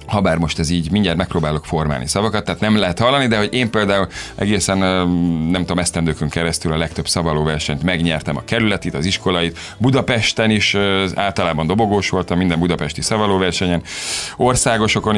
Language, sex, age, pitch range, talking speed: Hungarian, male, 30-49, 85-105 Hz, 155 wpm